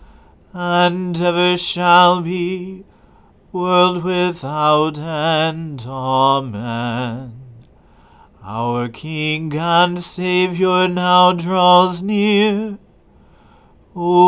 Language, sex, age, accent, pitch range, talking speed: English, male, 40-59, American, 130-170 Hz, 65 wpm